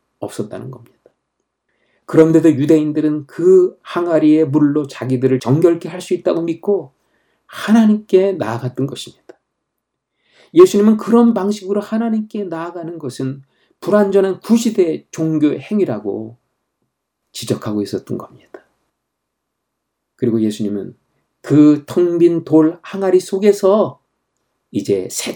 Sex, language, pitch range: male, Korean, 130-185 Hz